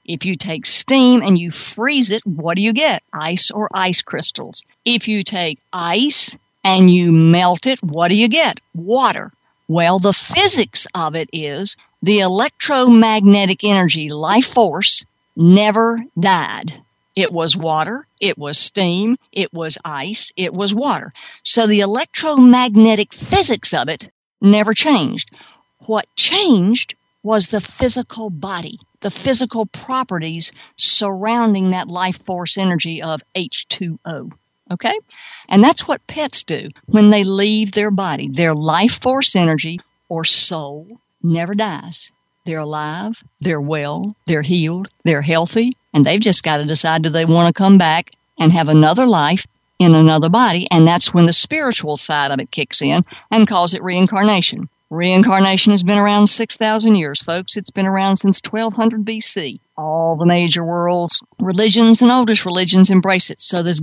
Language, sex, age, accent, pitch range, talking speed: English, female, 50-69, American, 170-220 Hz, 155 wpm